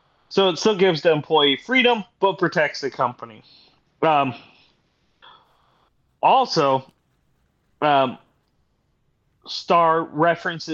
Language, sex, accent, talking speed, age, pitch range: English, male, American, 90 wpm, 30-49, 145-210 Hz